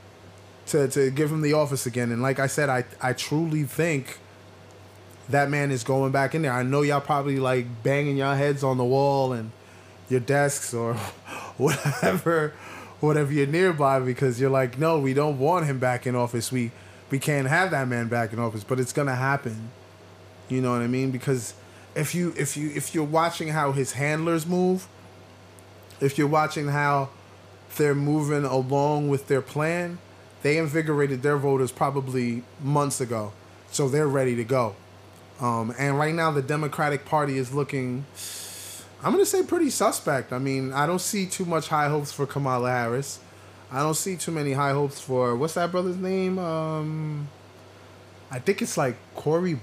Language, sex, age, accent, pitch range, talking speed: English, male, 20-39, American, 120-150 Hz, 180 wpm